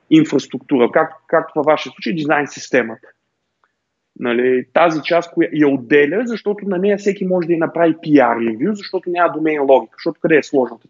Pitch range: 140-180 Hz